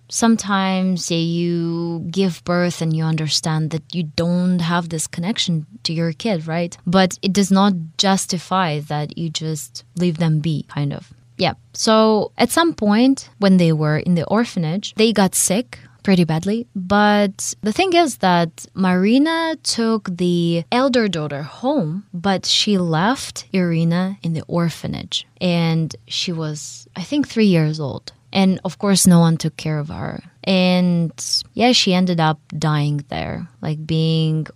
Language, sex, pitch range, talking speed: English, female, 155-200 Hz, 155 wpm